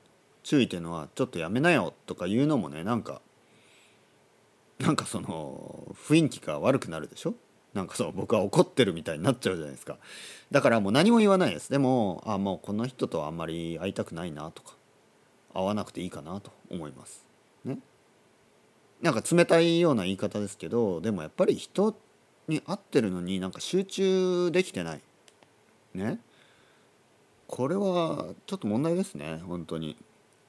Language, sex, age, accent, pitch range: Japanese, male, 40-59, native, 90-150 Hz